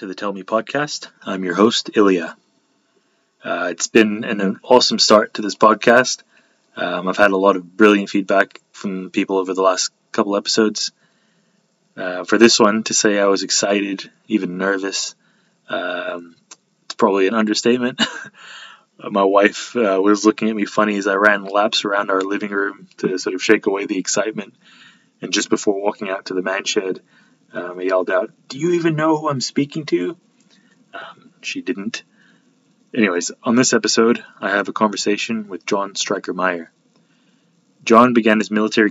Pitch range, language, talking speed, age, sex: 95-120 Hz, English, 170 wpm, 20-39, male